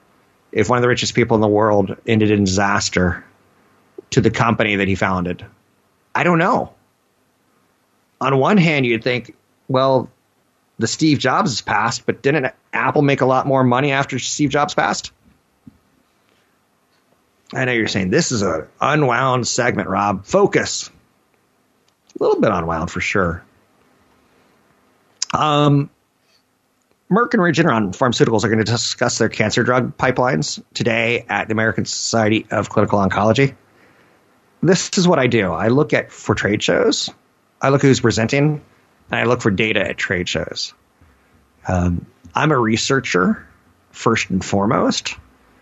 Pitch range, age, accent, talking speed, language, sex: 100-135 Hz, 30-49, American, 150 wpm, English, male